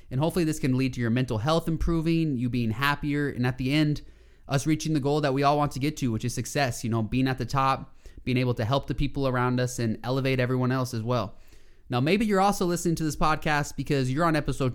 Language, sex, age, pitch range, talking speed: English, male, 20-39, 120-150 Hz, 255 wpm